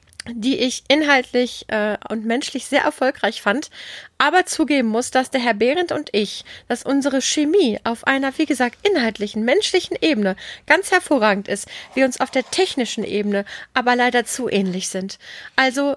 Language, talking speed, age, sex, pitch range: German, 160 wpm, 30-49, female, 230-275 Hz